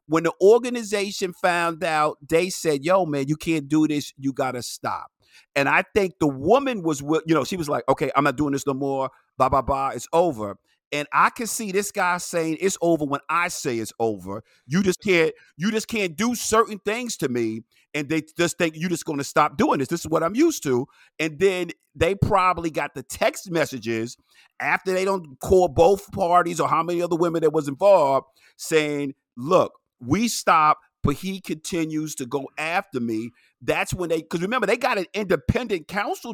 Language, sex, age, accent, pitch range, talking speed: English, male, 50-69, American, 150-200 Hz, 210 wpm